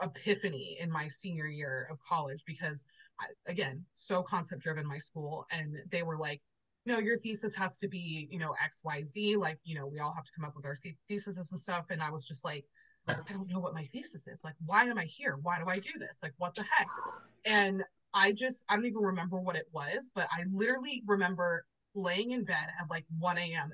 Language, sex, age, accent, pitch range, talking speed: English, female, 20-39, American, 155-195 Hz, 220 wpm